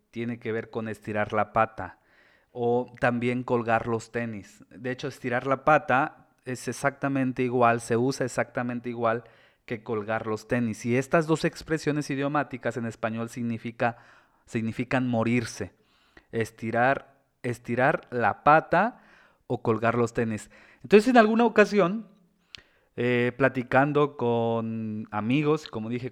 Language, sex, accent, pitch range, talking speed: Spanish, male, Mexican, 110-130 Hz, 125 wpm